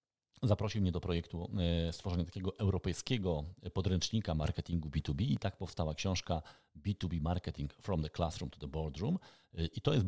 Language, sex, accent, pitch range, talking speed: Polish, male, native, 85-105 Hz, 150 wpm